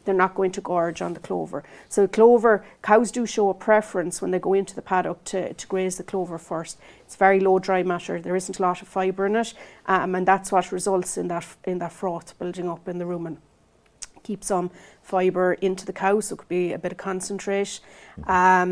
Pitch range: 180-205 Hz